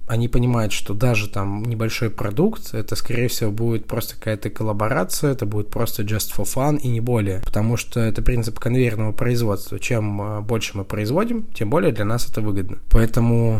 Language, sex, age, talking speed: Russian, male, 20-39, 175 wpm